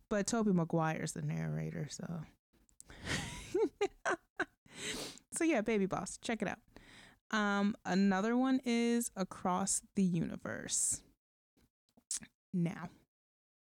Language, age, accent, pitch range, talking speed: English, 20-39, American, 170-205 Hz, 90 wpm